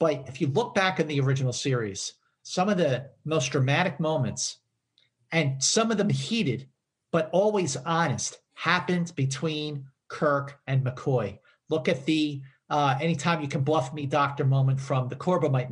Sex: male